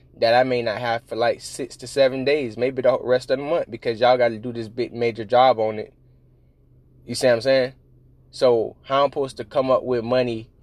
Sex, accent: male, American